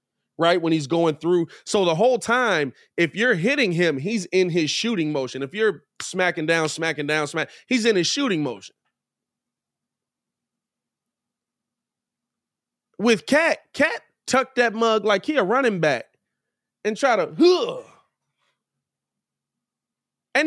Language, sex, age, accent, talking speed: English, male, 30-49, American, 130 wpm